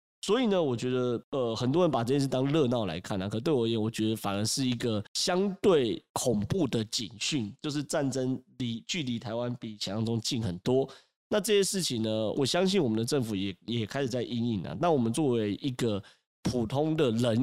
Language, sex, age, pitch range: Chinese, male, 30-49, 110-135 Hz